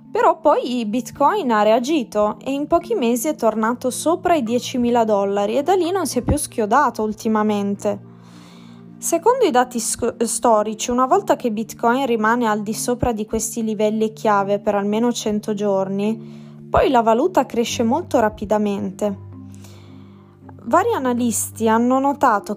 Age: 20-39